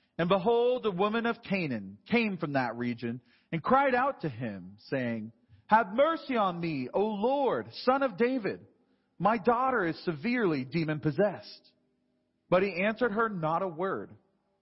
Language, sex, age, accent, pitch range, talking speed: English, male, 40-59, American, 135-225 Hz, 150 wpm